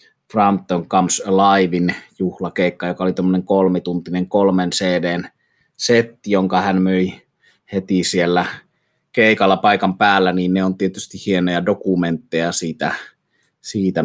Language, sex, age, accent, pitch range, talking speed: Finnish, male, 30-49, native, 90-100 Hz, 120 wpm